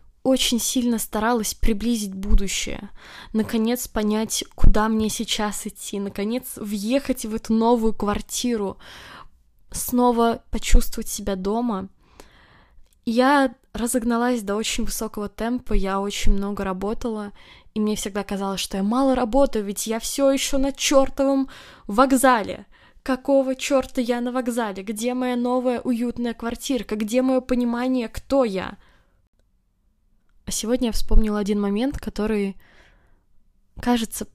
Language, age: Russian, 10-29